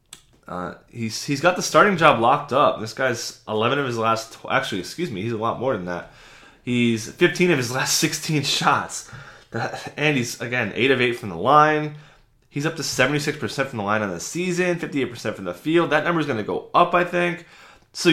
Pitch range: 115-155 Hz